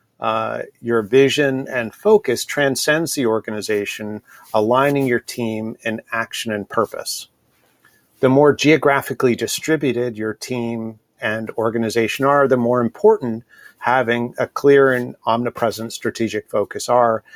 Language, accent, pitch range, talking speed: English, American, 115-140 Hz, 120 wpm